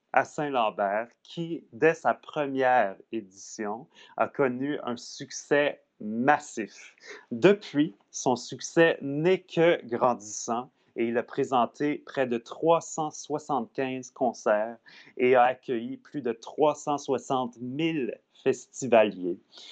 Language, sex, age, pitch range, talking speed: French, male, 30-49, 115-150 Hz, 105 wpm